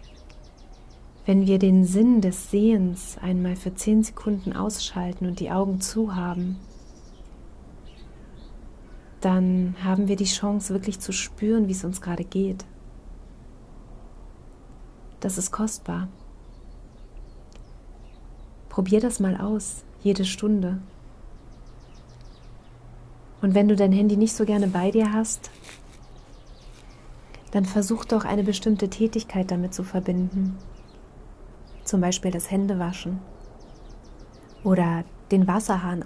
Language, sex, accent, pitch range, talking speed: German, female, German, 120-205 Hz, 110 wpm